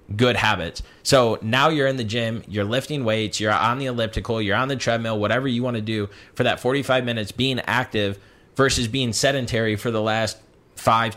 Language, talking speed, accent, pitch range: English, 200 wpm, American, 110-135 Hz